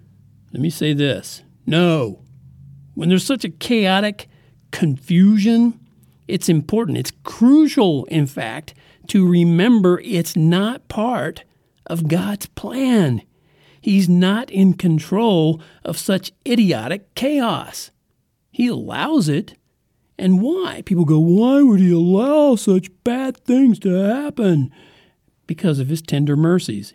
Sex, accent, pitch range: male, American, 140-195 Hz